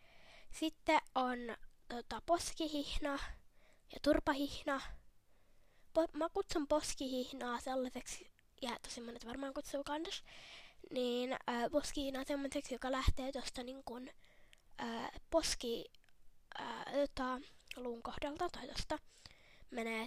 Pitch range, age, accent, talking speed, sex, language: 250-300 Hz, 20-39, native, 85 wpm, female, Finnish